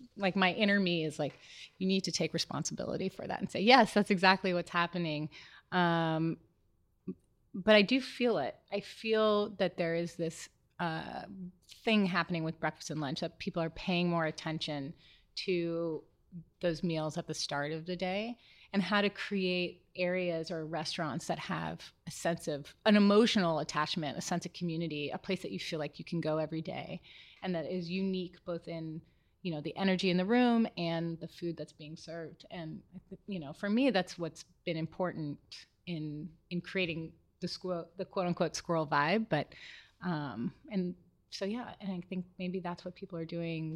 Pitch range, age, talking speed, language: 160-185 Hz, 30-49, 185 wpm, English